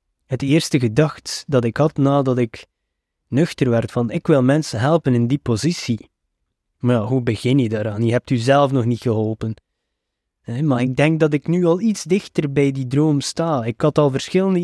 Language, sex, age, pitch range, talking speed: Dutch, male, 20-39, 115-160 Hz, 195 wpm